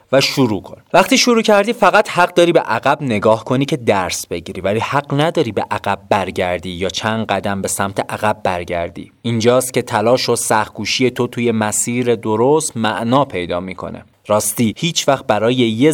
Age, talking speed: 30-49, 175 wpm